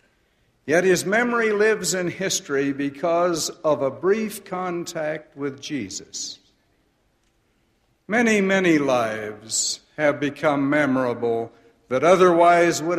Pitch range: 130-175 Hz